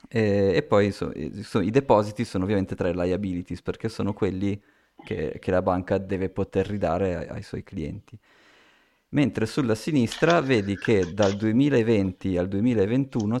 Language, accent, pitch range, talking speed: Italian, native, 95-110 Hz, 150 wpm